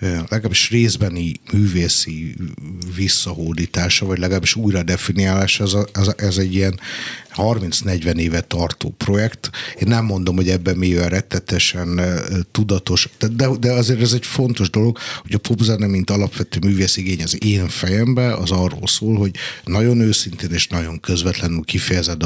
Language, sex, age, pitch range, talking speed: Hungarian, male, 50-69, 90-110 Hz, 140 wpm